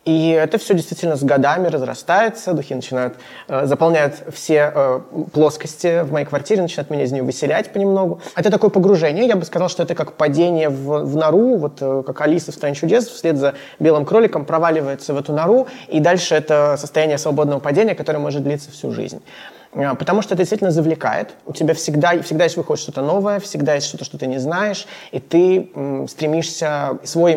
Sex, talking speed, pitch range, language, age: male, 185 wpm, 145-175 Hz, Russian, 20-39